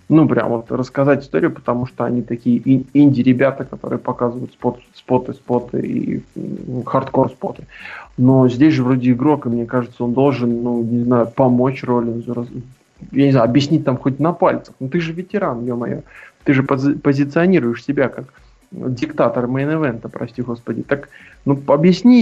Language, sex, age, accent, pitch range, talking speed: Russian, male, 20-39, native, 125-165 Hz, 160 wpm